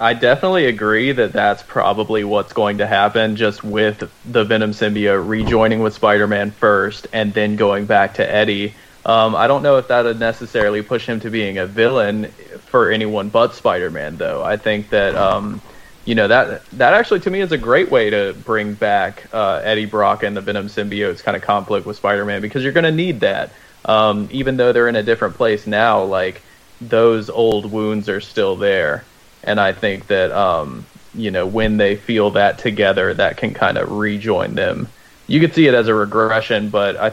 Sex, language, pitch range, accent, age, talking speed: male, English, 105-115 Hz, American, 20-39, 200 wpm